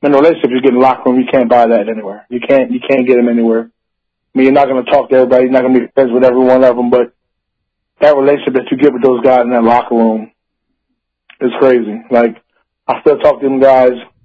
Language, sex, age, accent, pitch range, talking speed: English, male, 20-39, American, 125-145 Hz, 260 wpm